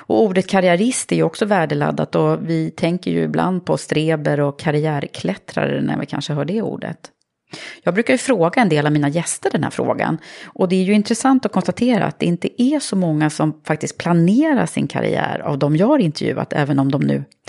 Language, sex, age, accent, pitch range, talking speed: Swedish, female, 30-49, native, 155-230 Hz, 210 wpm